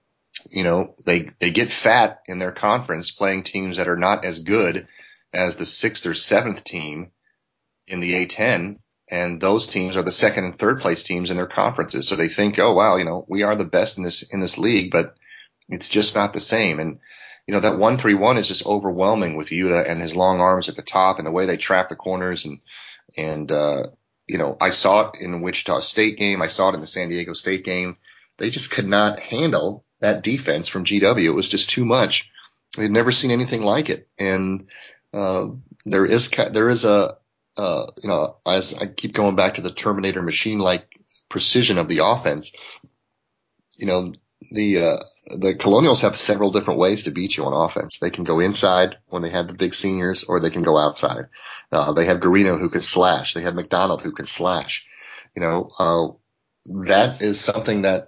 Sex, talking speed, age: male, 210 wpm, 30-49